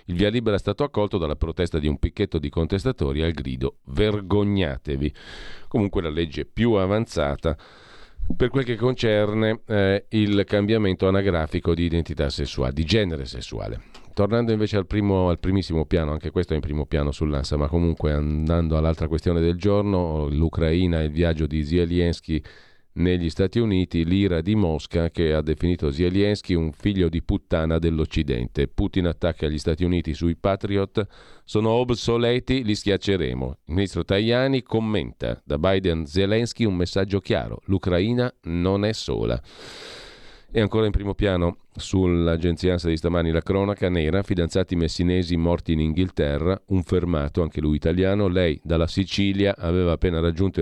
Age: 40-59